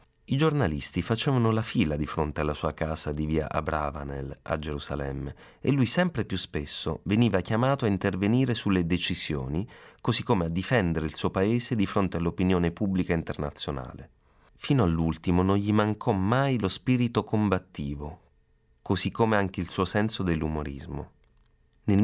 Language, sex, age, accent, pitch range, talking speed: Italian, male, 30-49, native, 75-100 Hz, 150 wpm